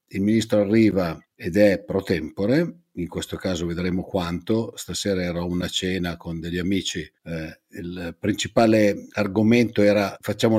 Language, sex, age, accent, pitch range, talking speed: Italian, male, 50-69, native, 90-105 Hz, 145 wpm